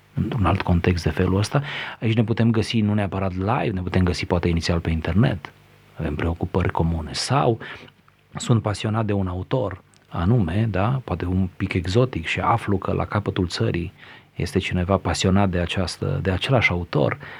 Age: 30-49